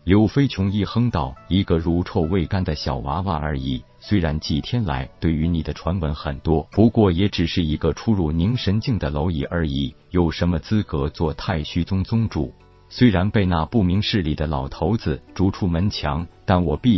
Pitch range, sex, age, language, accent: 75-100 Hz, male, 50-69, Chinese, native